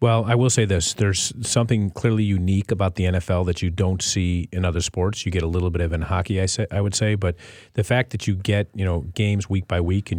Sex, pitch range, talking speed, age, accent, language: male, 95-110 Hz, 265 wpm, 40-59, American, English